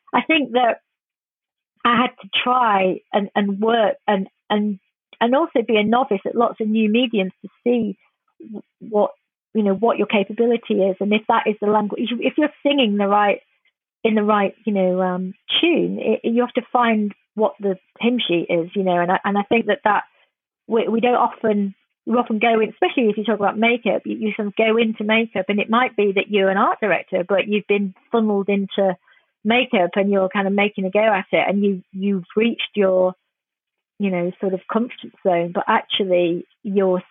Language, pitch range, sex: English, 190-230 Hz, female